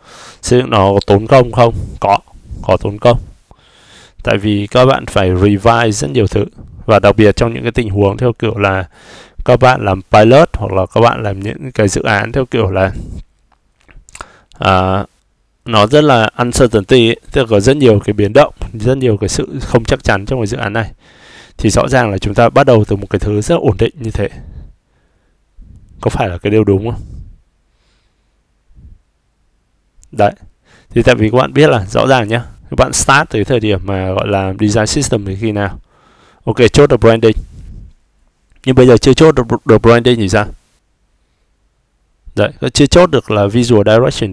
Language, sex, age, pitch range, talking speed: Vietnamese, male, 20-39, 100-120 Hz, 195 wpm